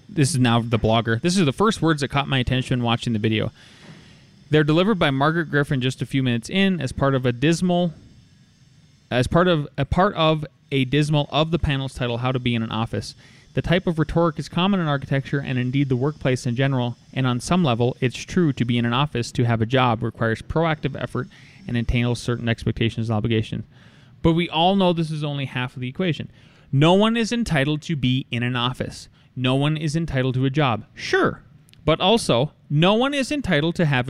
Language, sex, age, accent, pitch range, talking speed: English, male, 20-39, American, 120-155 Hz, 220 wpm